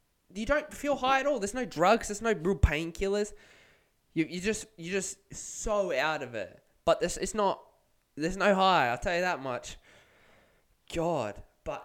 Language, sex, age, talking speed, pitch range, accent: English, male, 20-39, 185 wpm, 120-205 Hz, Australian